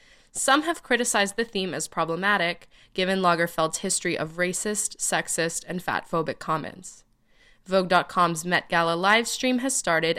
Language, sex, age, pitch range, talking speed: English, female, 20-39, 170-230 Hz, 130 wpm